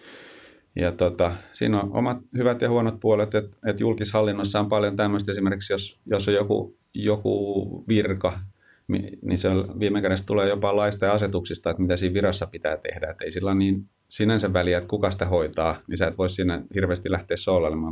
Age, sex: 30-49, male